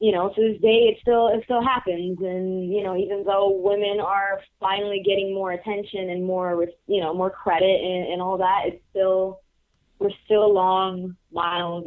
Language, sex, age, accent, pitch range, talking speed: English, female, 20-39, American, 160-200 Hz, 190 wpm